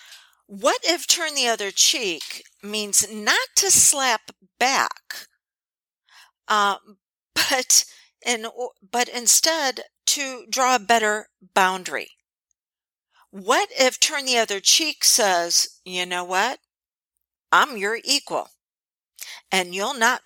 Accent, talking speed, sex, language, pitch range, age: American, 110 wpm, female, English, 175-245 Hz, 50-69